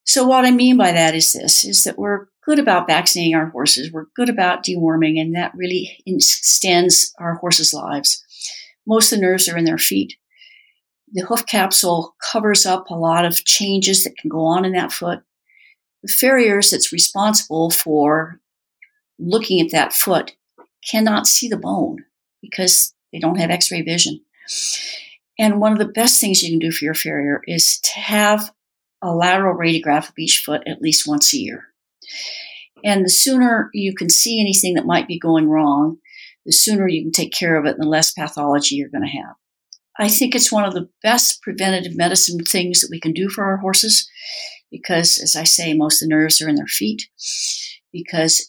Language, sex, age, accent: English, female, 60-79, American